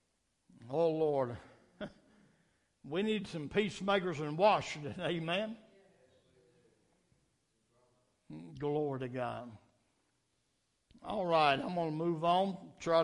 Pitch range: 140-195 Hz